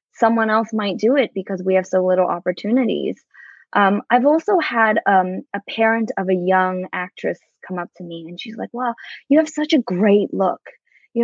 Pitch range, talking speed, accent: 185-250 Hz, 200 wpm, American